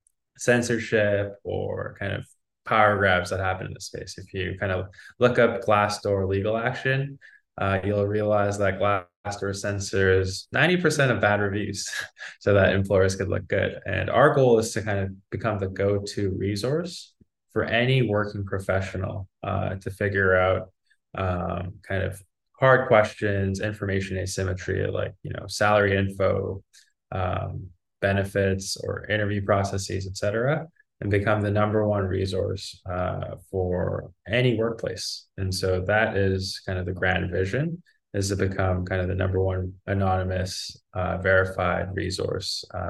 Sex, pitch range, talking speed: male, 95-105 Hz, 145 wpm